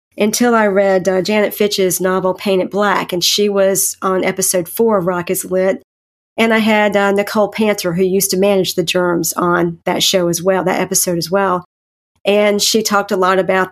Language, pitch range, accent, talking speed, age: English, 185-220 Hz, American, 200 wpm, 40-59